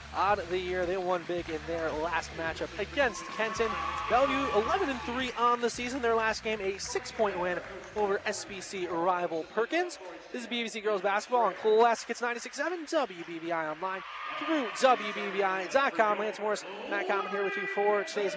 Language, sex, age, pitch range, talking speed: English, male, 20-39, 165-205 Hz, 170 wpm